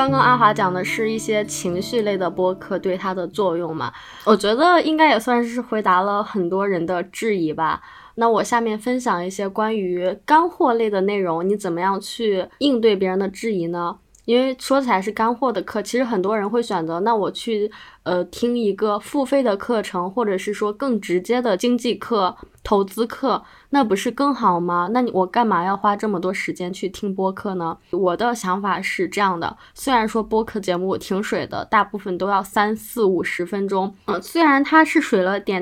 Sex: female